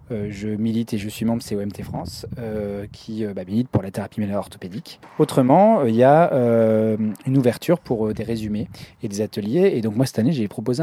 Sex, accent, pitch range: male, French, 105-130 Hz